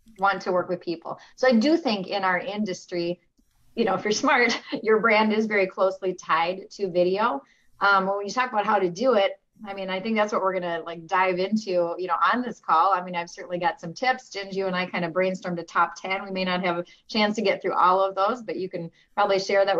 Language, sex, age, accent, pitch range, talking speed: English, female, 30-49, American, 175-210 Hz, 260 wpm